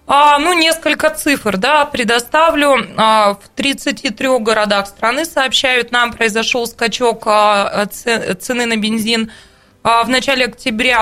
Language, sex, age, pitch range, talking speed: Russian, female, 20-39, 210-245 Hz, 105 wpm